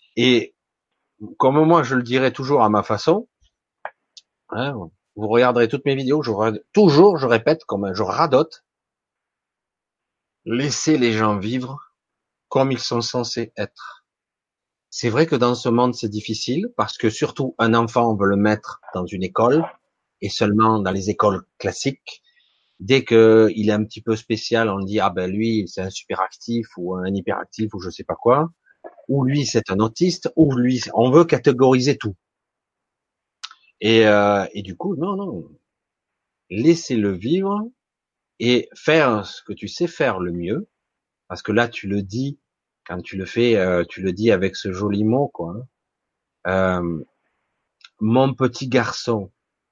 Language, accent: French, French